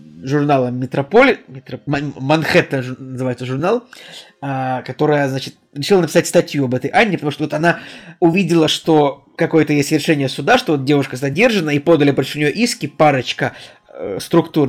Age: 20-39